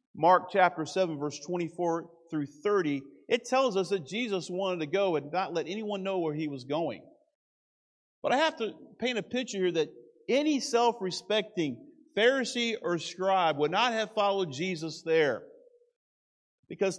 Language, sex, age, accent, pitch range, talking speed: English, male, 50-69, American, 165-220 Hz, 160 wpm